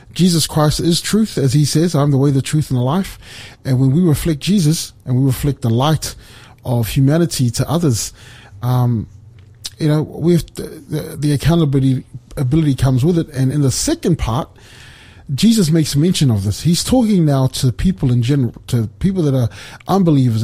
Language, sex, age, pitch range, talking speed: English, male, 30-49, 120-160 Hz, 190 wpm